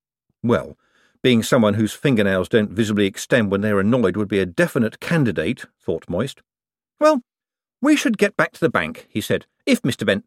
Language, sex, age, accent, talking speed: English, male, 50-69, British, 180 wpm